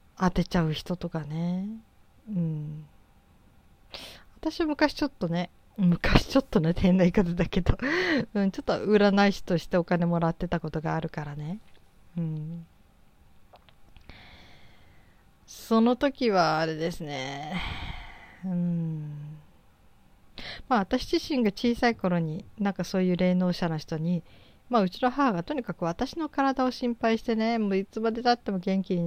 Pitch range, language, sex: 160-210 Hz, Japanese, female